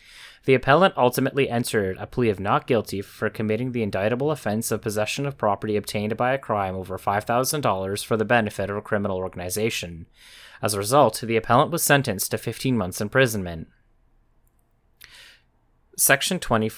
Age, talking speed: 30-49, 155 wpm